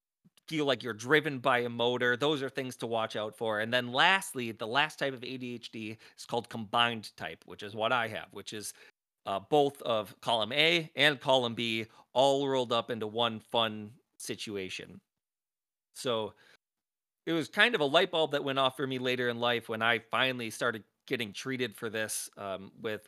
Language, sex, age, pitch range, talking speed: English, male, 30-49, 110-140 Hz, 190 wpm